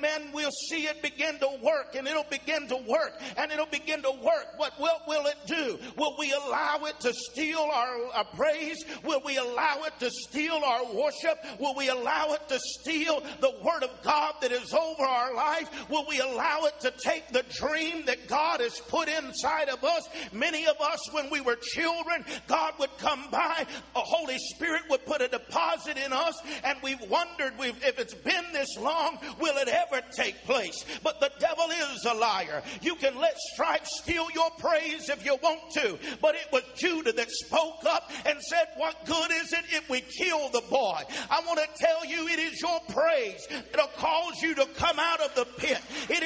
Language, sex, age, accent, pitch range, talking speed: English, male, 50-69, American, 275-325 Hz, 200 wpm